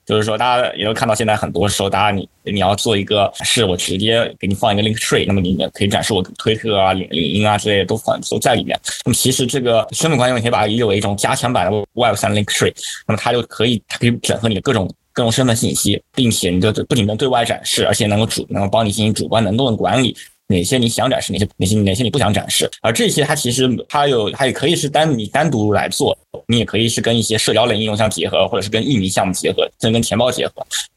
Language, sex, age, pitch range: Chinese, male, 20-39, 105-120 Hz